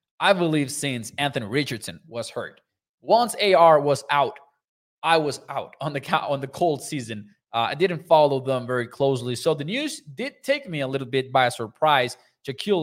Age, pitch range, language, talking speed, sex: 20-39, 130-180 Hz, English, 180 wpm, male